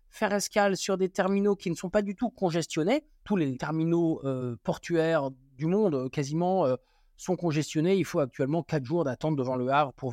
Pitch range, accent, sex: 155-220 Hz, French, male